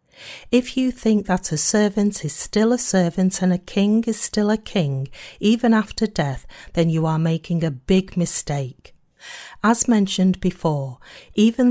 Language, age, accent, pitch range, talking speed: English, 40-59, British, 155-220 Hz, 160 wpm